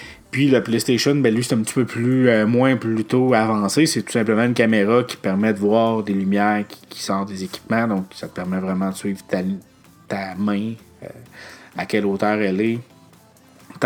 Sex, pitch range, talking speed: male, 100-120 Hz, 200 wpm